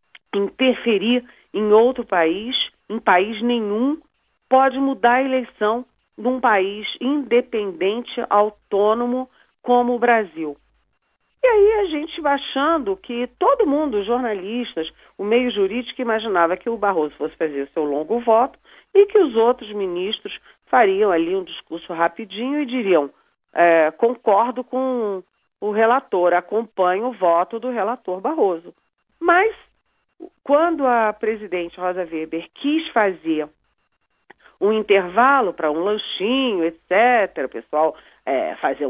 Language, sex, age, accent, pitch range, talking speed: Portuguese, female, 40-59, Brazilian, 195-280 Hz, 120 wpm